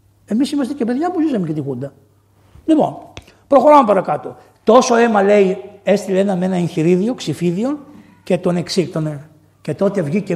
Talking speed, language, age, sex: 155 wpm, Greek, 60-79, male